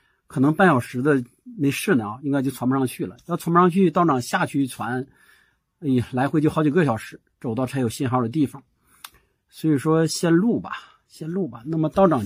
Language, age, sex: Chinese, 50-69, male